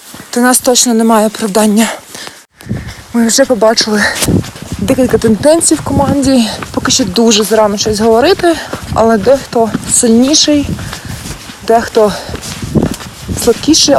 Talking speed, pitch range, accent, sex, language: 105 wpm, 220-250 Hz, native, female, Ukrainian